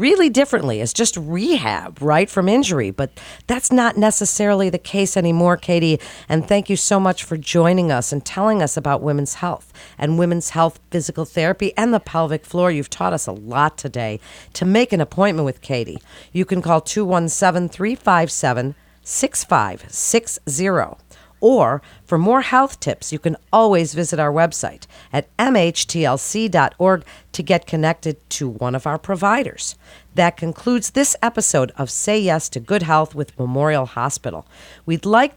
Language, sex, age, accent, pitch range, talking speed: English, female, 50-69, American, 155-205 Hz, 155 wpm